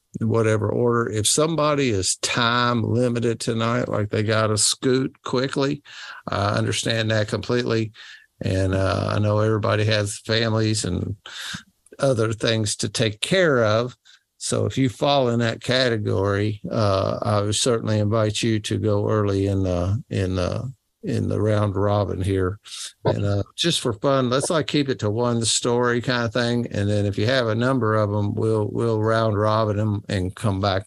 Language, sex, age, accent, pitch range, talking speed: English, male, 50-69, American, 100-115 Hz, 170 wpm